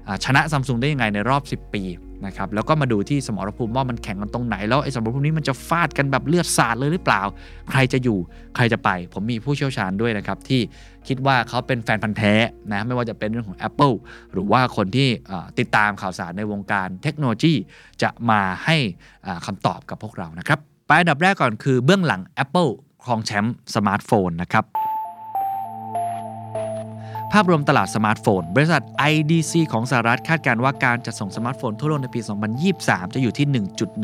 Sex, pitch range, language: male, 105-140 Hz, Thai